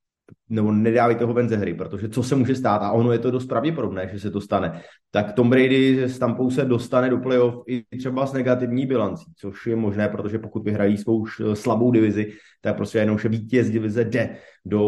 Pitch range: 105-125 Hz